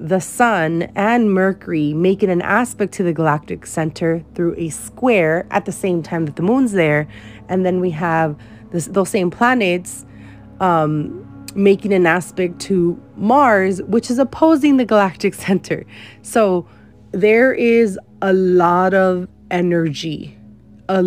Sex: female